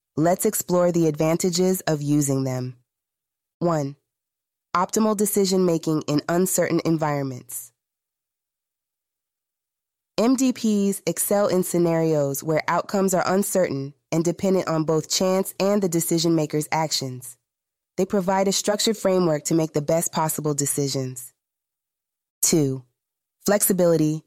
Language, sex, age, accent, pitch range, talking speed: English, female, 20-39, American, 145-180 Hz, 110 wpm